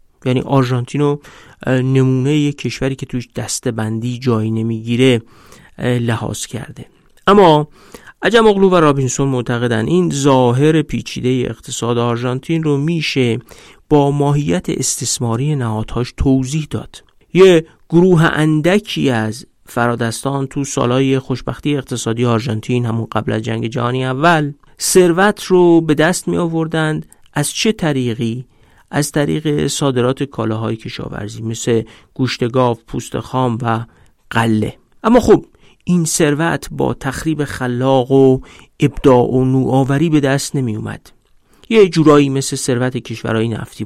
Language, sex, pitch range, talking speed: Persian, male, 120-150 Hz, 125 wpm